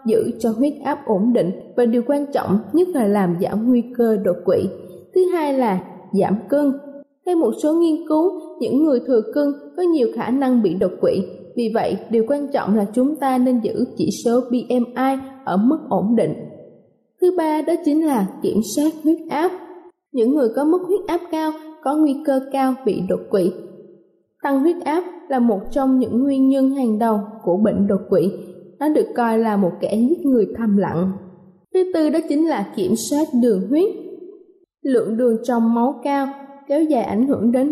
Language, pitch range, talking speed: Vietnamese, 225-310 Hz, 195 wpm